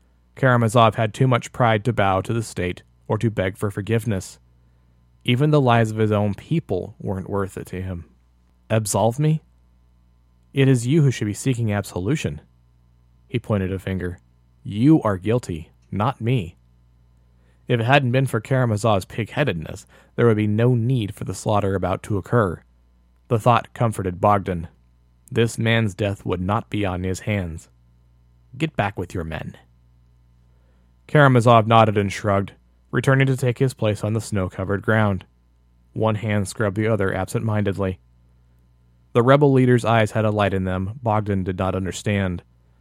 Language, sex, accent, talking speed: English, male, American, 165 wpm